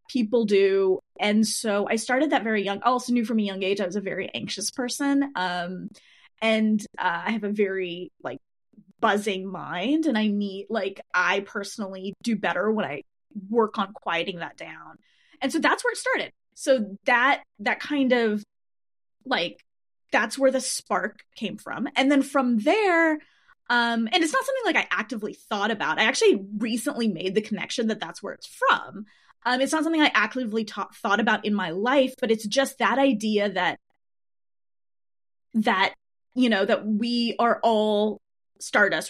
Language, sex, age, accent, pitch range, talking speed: English, female, 20-39, American, 195-255 Hz, 180 wpm